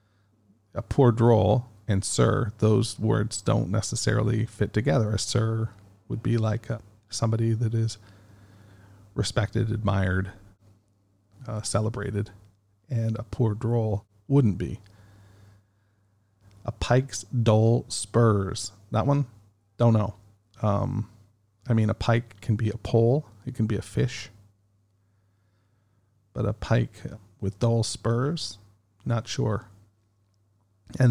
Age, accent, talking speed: 40-59, American, 115 wpm